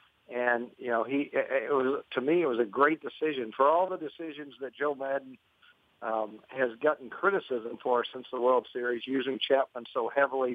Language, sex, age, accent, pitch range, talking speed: English, male, 50-69, American, 120-145 Hz, 175 wpm